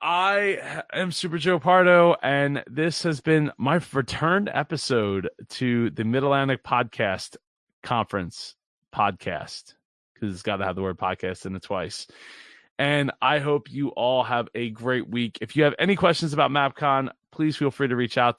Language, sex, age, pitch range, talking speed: English, male, 20-39, 115-150 Hz, 170 wpm